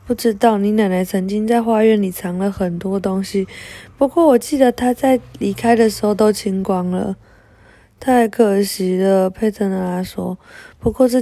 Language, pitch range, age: Chinese, 195-255 Hz, 20-39